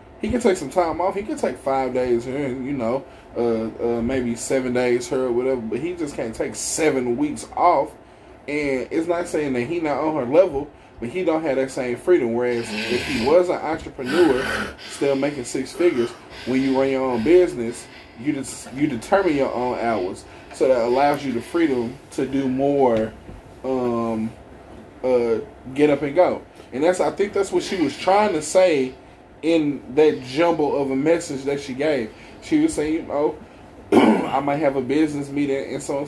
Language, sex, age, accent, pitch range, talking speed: English, male, 20-39, American, 130-175 Hz, 195 wpm